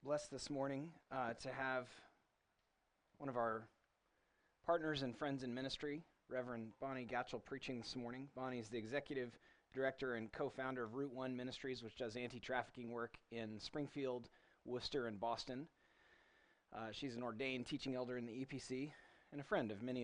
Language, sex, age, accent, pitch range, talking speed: English, male, 30-49, American, 115-140 Hz, 170 wpm